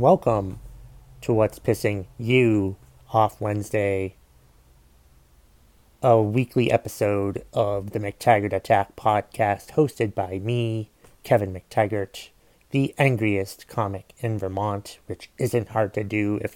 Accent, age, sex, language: American, 30-49, male, English